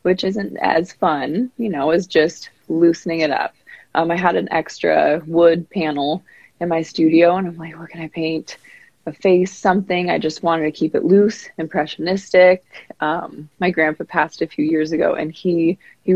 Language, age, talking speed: English, 20-39, 190 wpm